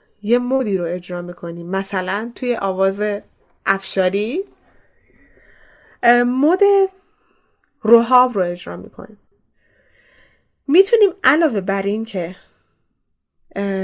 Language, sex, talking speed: Persian, female, 80 wpm